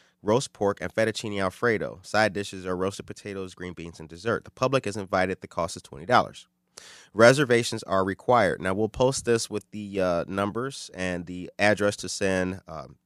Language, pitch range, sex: English, 90-105 Hz, male